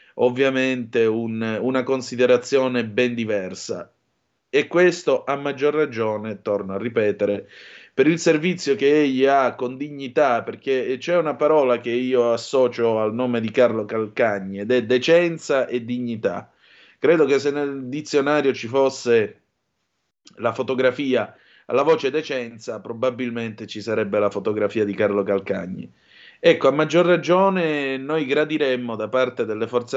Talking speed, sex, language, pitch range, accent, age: 135 wpm, male, Italian, 110-140 Hz, native, 30-49